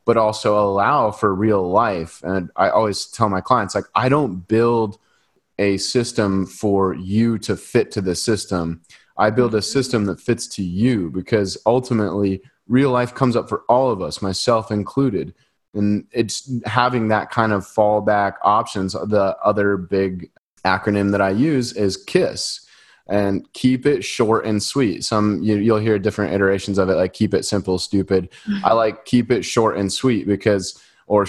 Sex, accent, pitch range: male, American, 100-120 Hz